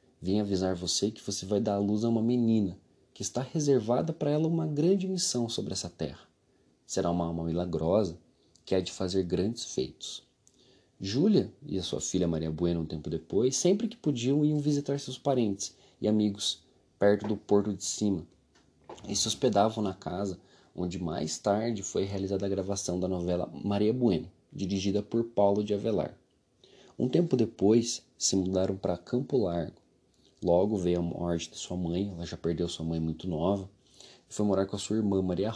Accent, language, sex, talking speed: Brazilian, Portuguese, male, 180 wpm